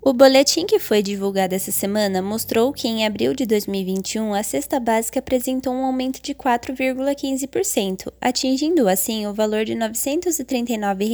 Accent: Brazilian